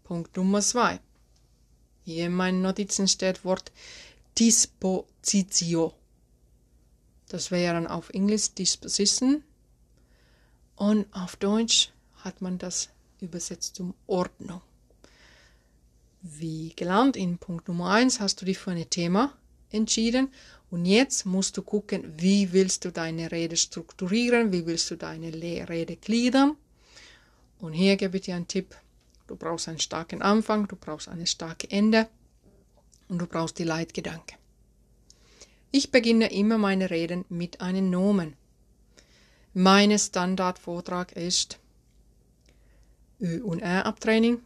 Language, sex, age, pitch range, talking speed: German, female, 30-49, 170-205 Hz, 125 wpm